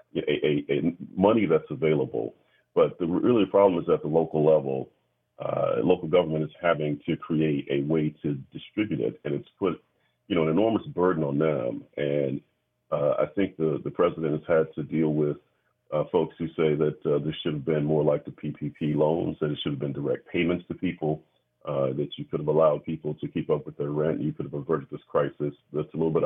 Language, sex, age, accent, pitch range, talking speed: English, male, 40-59, American, 75-85 Hz, 220 wpm